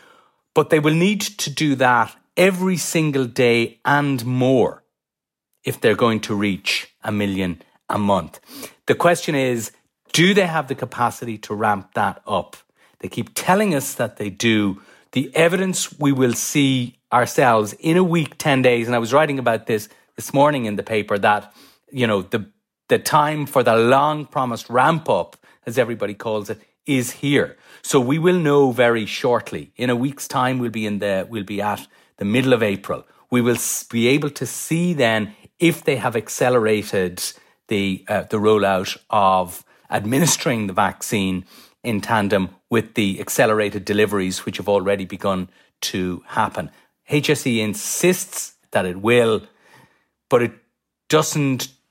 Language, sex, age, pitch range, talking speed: English, male, 40-59, 105-145 Hz, 160 wpm